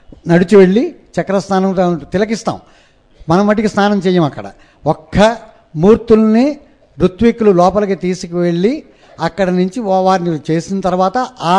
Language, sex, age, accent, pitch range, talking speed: Telugu, male, 60-79, native, 170-205 Hz, 110 wpm